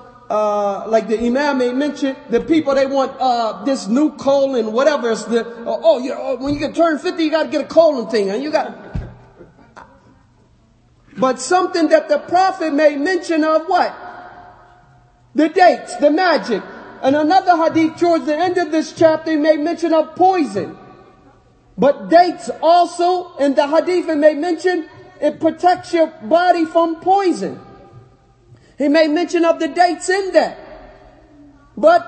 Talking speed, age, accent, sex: 155 wpm, 40-59, American, male